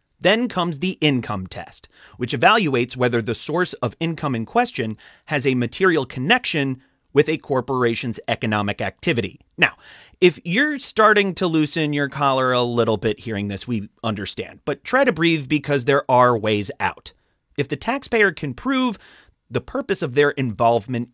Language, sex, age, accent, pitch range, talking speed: English, male, 30-49, American, 115-175 Hz, 160 wpm